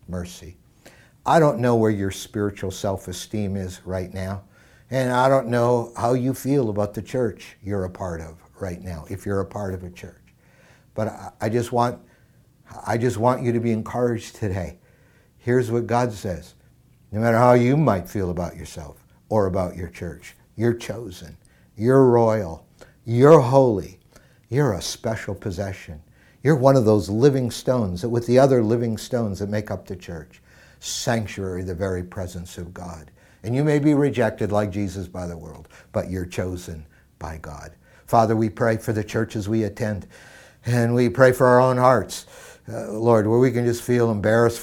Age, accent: 60-79, American